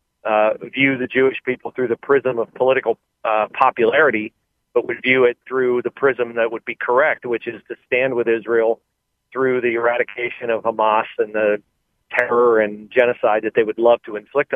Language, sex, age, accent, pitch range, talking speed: English, male, 40-59, American, 115-135 Hz, 185 wpm